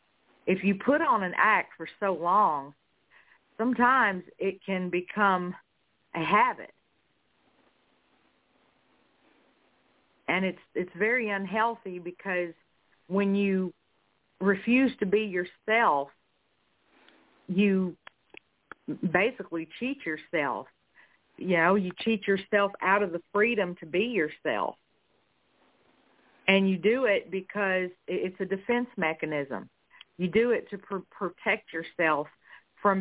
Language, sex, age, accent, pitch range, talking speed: English, female, 50-69, American, 175-205 Hz, 110 wpm